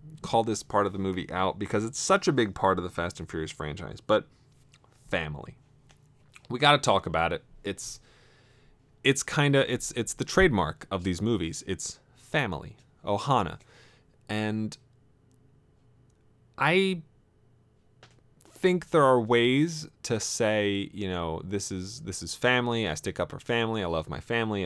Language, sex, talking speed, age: English, male, 160 wpm, 30-49